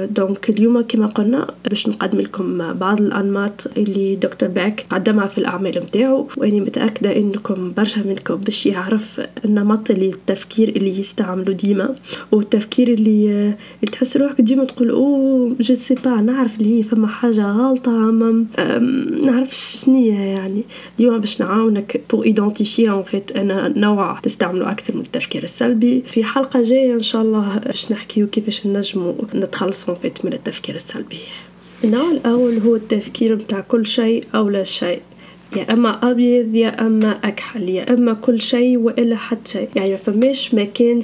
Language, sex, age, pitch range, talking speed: Arabic, female, 10-29, 200-240 Hz, 145 wpm